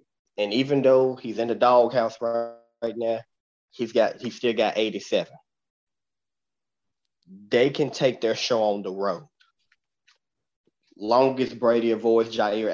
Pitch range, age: 115-175 Hz, 30-49